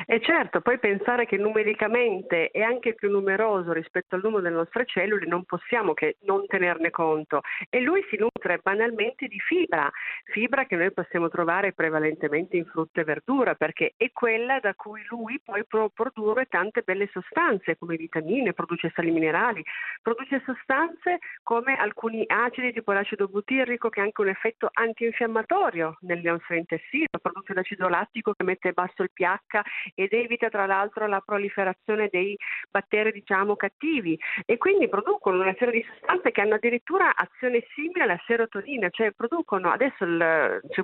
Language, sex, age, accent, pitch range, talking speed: Italian, female, 50-69, native, 175-235 Hz, 160 wpm